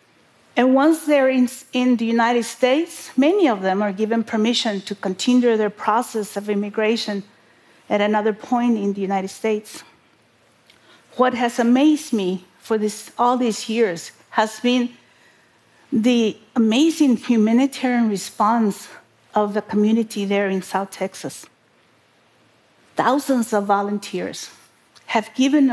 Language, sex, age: Korean, female, 50-69